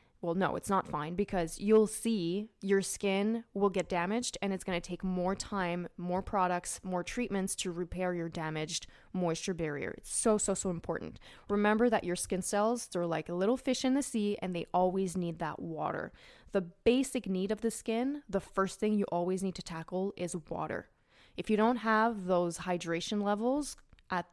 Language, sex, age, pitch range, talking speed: English, female, 20-39, 175-215 Hz, 190 wpm